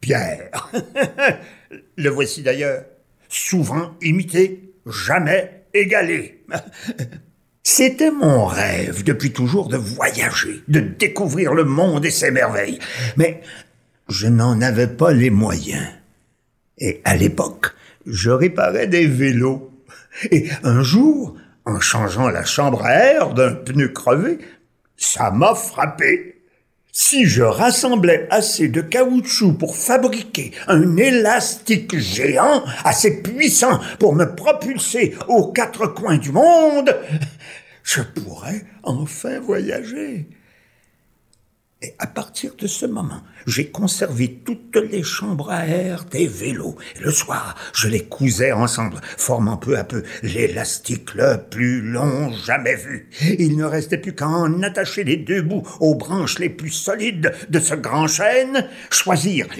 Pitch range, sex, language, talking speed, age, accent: 140-215 Hz, male, French, 130 wpm, 60-79, French